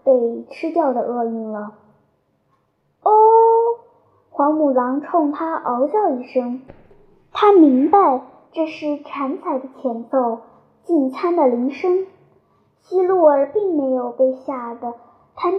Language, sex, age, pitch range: Chinese, male, 10-29, 260-340 Hz